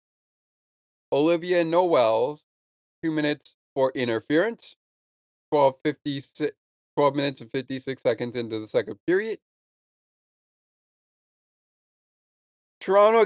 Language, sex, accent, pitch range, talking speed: English, male, American, 140-180 Hz, 75 wpm